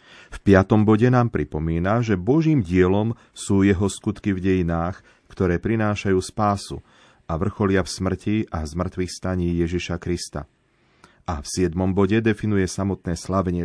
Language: Slovak